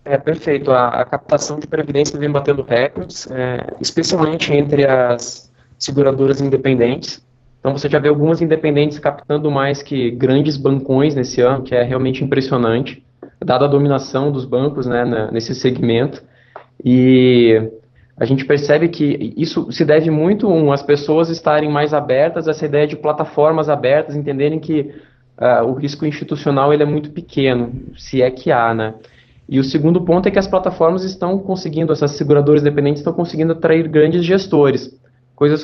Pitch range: 130-160 Hz